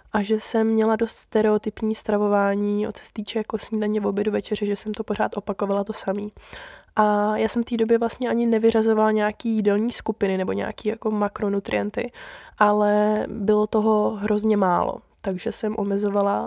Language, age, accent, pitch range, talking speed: Czech, 20-39, native, 200-220 Hz, 170 wpm